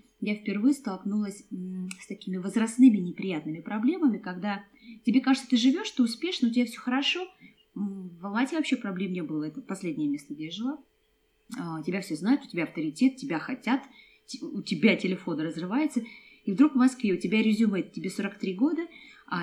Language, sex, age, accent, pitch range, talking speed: Russian, female, 20-39, native, 190-260 Hz, 165 wpm